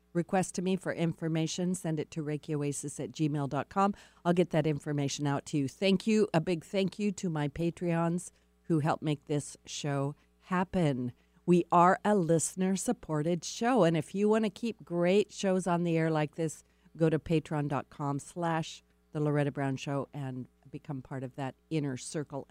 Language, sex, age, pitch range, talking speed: English, female, 50-69, 140-180 Hz, 175 wpm